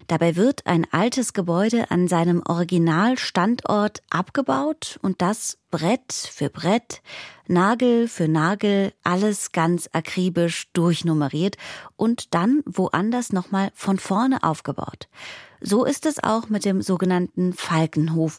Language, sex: German, female